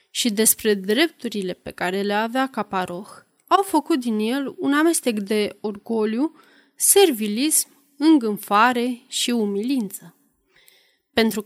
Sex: female